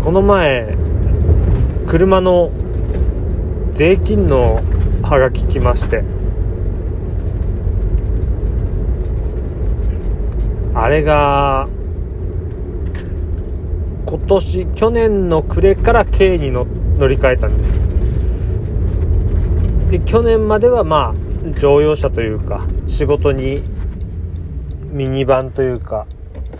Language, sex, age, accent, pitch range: Japanese, male, 40-59, native, 80-95 Hz